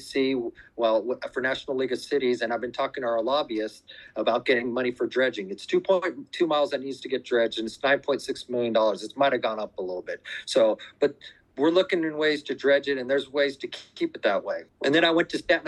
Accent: American